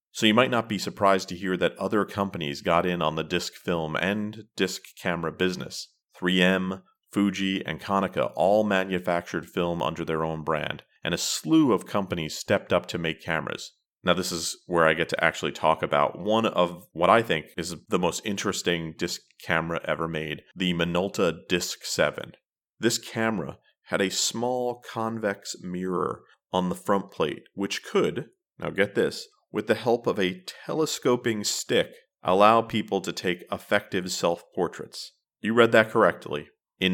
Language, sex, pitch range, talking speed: English, male, 85-105 Hz, 165 wpm